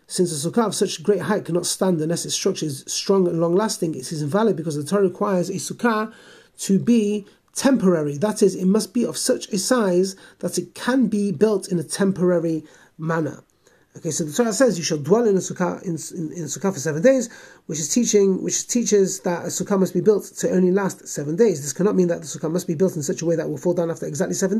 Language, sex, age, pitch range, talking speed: English, male, 30-49, 170-210 Hz, 245 wpm